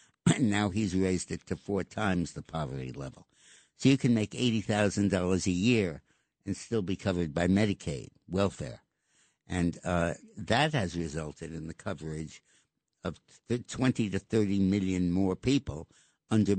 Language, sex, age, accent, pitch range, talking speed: English, male, 60-79, American, 85-105 Hz, 150 wpm